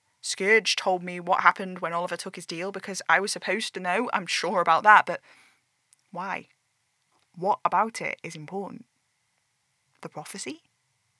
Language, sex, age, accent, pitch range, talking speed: English, female, 10-29, British, 175-220 Hz, 155 wpm